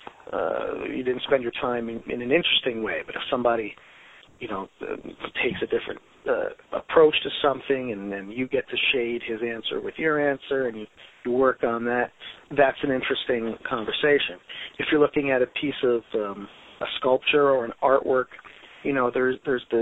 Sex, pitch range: male, 115-150 Hz